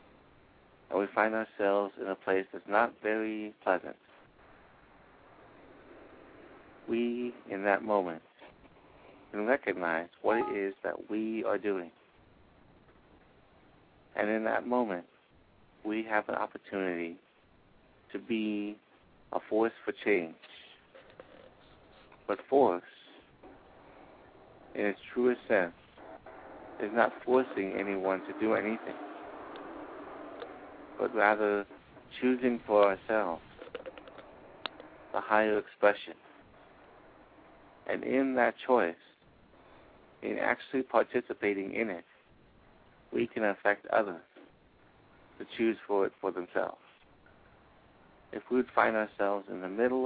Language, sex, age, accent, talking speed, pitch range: English, male, 60-79, American, 100 wpm, 95-115 Hz